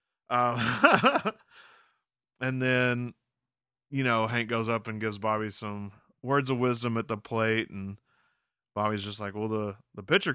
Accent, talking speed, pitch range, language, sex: American, 155 wpm, 105-135 Hz, English, male